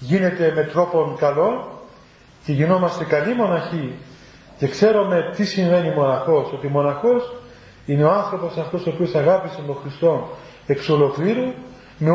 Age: 40-59